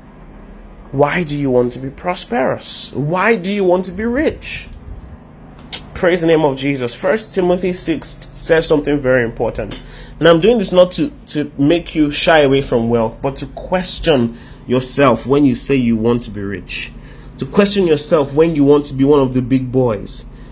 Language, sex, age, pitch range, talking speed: English, male, 30-49, 125-160 Hz, 185 wpm